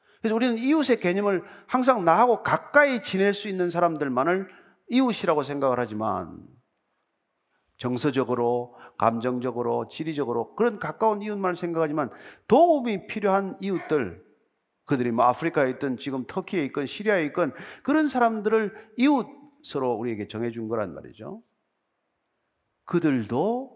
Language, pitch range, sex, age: Korean, 140-235 Hz, male, 40-59